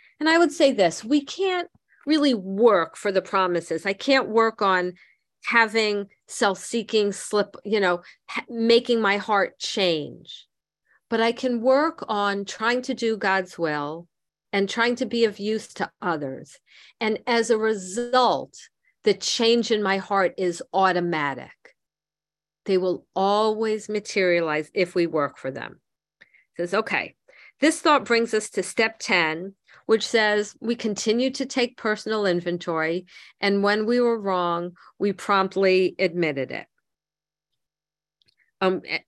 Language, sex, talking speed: English, female, 140 wpm